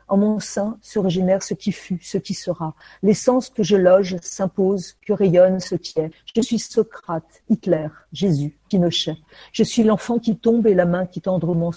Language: French